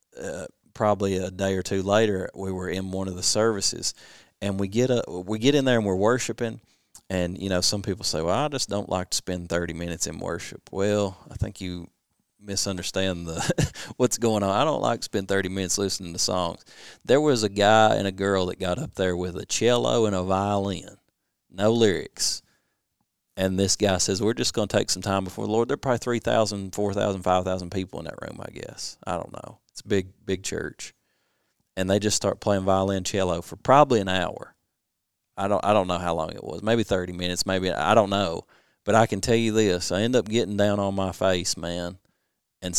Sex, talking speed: male, 220 wpm